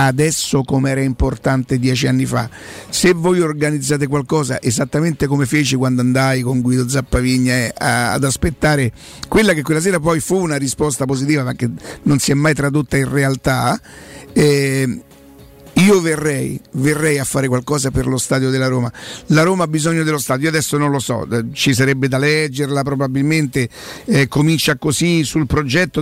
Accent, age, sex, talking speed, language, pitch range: native, 50-69, male, 170 wpm, Italian, 135-165 Hz